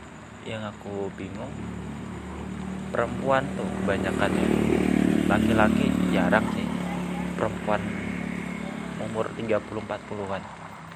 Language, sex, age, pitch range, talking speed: Indonesian, male, 30-49, 95-135 Hz, 65 wpm